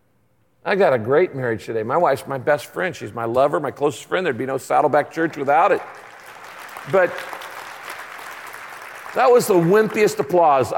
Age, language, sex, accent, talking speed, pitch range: 50-69, English, male, American, 165 wpm, 155-225 Hz